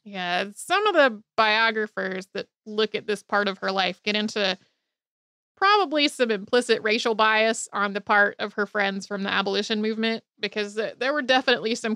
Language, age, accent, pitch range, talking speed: English, 30-49, American, 200-240 Hz, 175 wpm